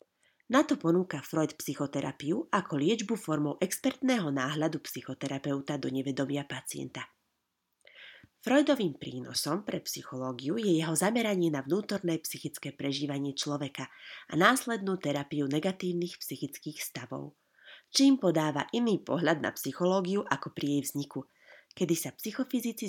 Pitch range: 140-190 Hz